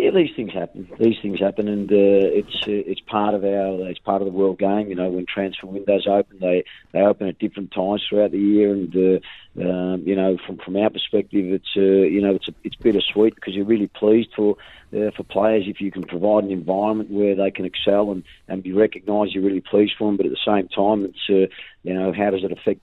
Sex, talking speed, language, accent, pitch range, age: male, 245 wpm, English, Australian, 95-105 Hz, 40-59